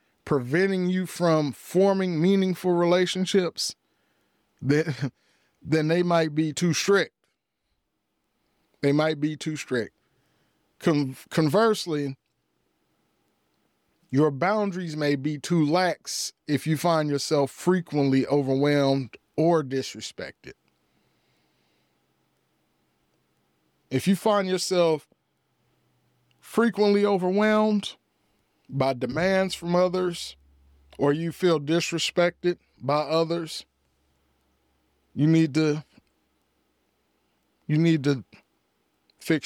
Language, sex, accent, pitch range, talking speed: English, male, American, 125-170 Hz, 85 wpm